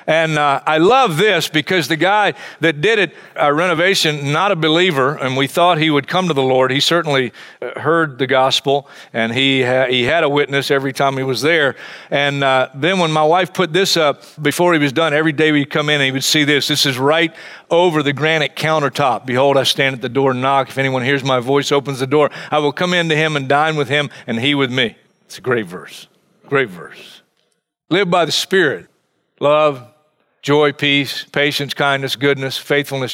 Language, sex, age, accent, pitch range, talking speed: English, male, 40-59, American, 140-175 Hz, 215 wpm